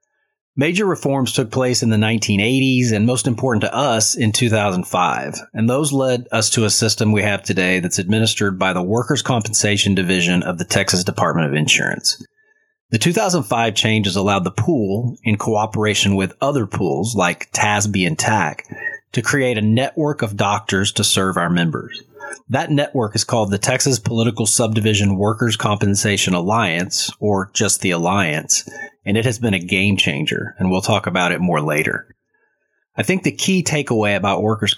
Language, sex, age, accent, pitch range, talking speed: English, male, 30-49, American, 100-120 Hz, 170 wpm